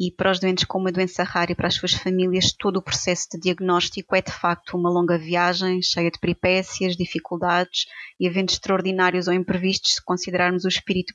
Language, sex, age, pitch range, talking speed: Portuguese, female, 20-39, 175-190 Hz, 200 wpm